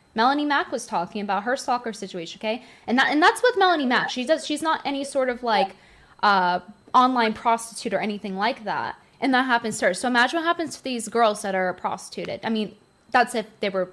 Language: English